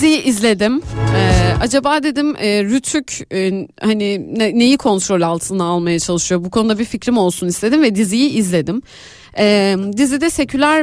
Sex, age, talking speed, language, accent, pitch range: female, 30-49, 150 wpm, Turkish, native, 185-255 Hz